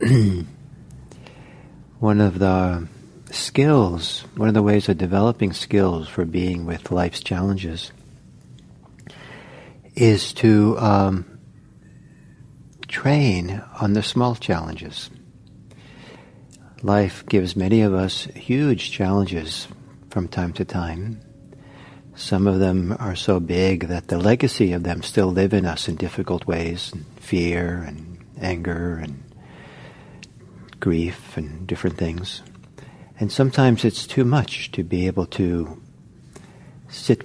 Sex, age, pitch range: male, 50-69, 90-110 Hz